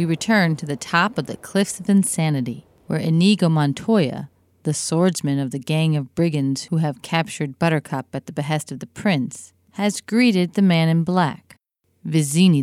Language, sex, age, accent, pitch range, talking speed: English, female, 40-59, American, 135-175 Hz, 175 wpm